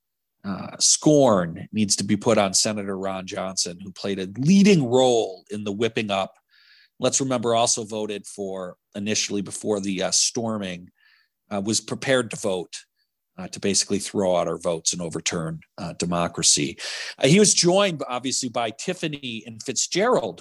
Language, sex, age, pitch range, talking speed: English, male, 40-59, 100-130 Hz, 160 wpm